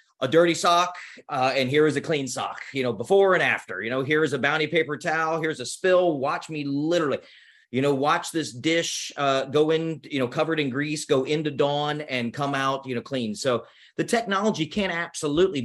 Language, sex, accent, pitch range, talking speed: English, male, American, 135-185 Hz, 210 wpm